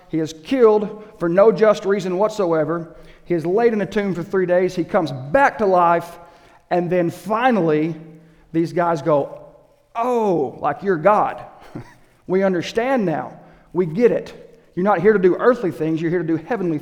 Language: English